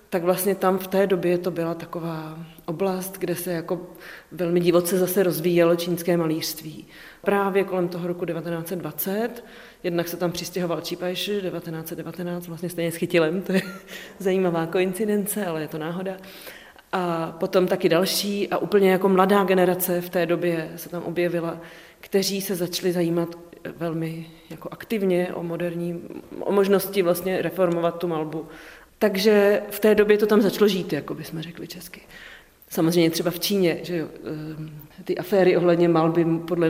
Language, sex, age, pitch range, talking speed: Czech, female, 30-49, 170-190 Hz, 150 wpm